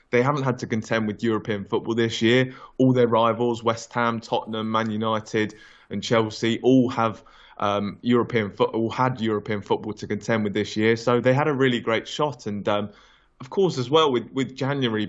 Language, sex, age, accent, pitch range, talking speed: English, male, 20-39, British, 110-120 Hz, 200 wpm